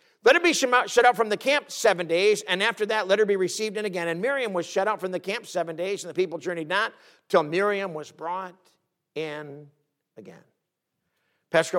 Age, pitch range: 50-69, 190-285 Hz